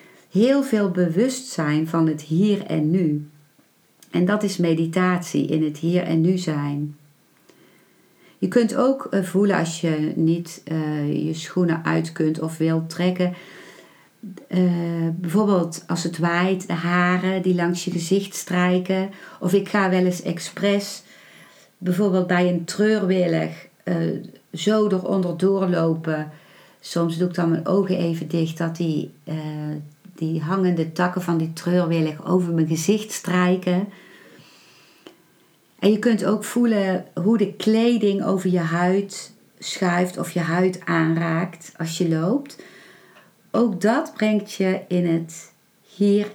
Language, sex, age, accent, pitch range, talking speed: Dutch, female, 40-59, Dutch, 165-195 Hz, 140 wpm